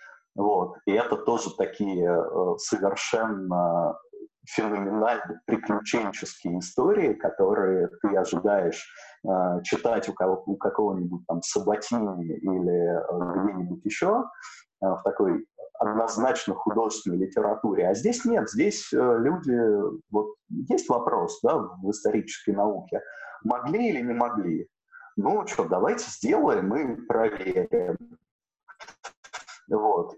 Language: Russian